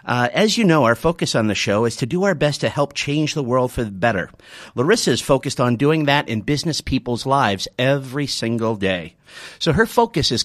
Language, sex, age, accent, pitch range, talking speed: English, male, 50-69, American, 125-175 Hz, 225 wpm